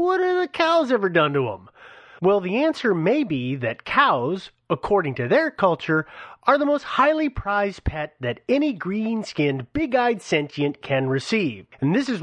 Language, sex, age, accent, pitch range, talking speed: English, male, 30-49, American, 160-230 Hz, 170 wpm